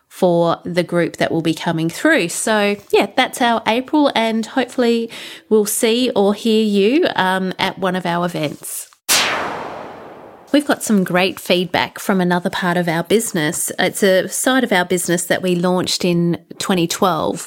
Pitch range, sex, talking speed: 170-200 Hz, female, 165 wpm